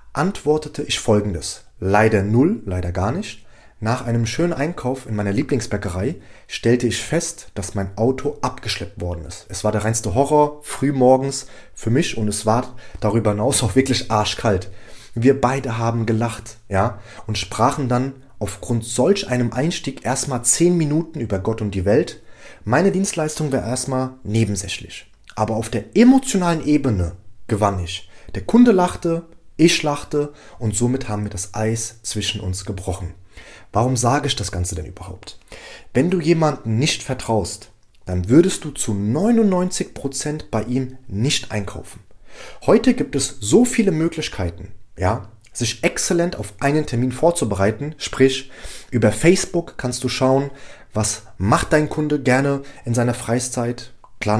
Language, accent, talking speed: German, German, 150 wpm